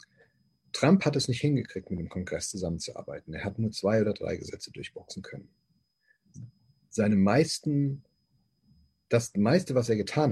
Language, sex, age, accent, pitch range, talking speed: German, male, 40-59, German, 95-130 Hz, 145 wpm